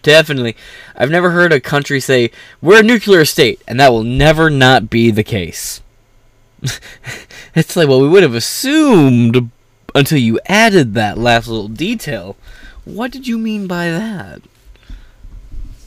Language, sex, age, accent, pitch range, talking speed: English, male, 20-39, American, 115-165 Hz, 150 wpm